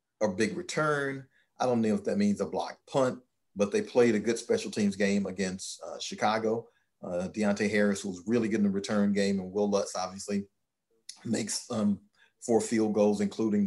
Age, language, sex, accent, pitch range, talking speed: 40-59, English, male, American, 100-115 Hz, 190 wpm